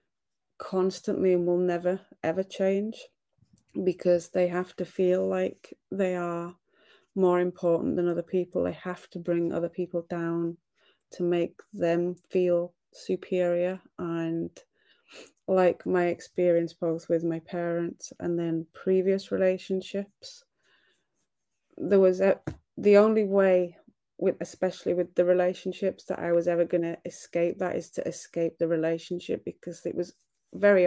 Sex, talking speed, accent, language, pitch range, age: female, 135 wpm, British, English, 170-190 Hz, 30-49